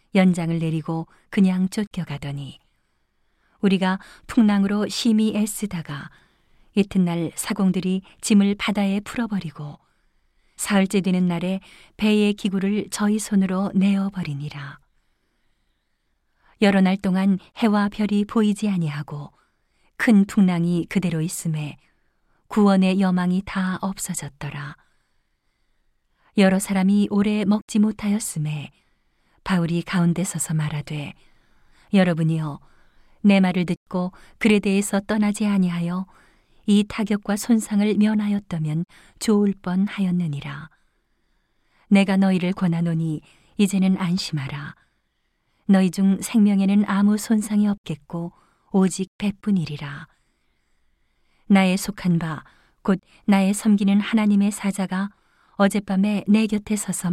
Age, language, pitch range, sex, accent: 40-59, Korean, 170-205 Hz, female, native